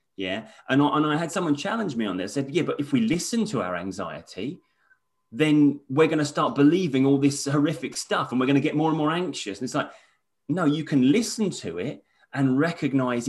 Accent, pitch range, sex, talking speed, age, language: British, 130-155 Hz, male, 220 wpm, 30-49, English